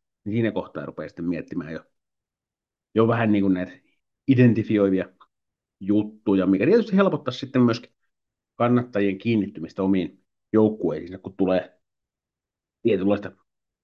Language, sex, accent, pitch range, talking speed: Finnish, male, native, 95-130 Hz, 110 wpm